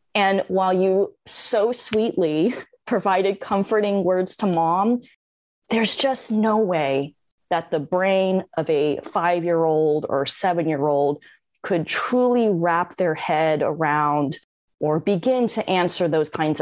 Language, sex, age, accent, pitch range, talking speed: English, female, 20-39, American, 165-215 Hz, 125 wpm